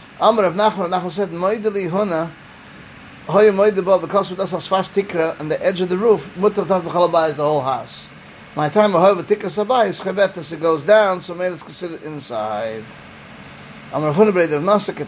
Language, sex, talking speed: English, male, 205 wpm